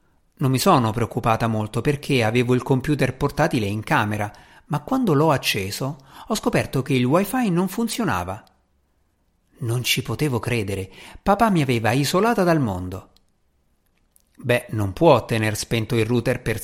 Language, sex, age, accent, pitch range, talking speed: Italian, male, 50-69, native, 110-160 Hz, 150 wpm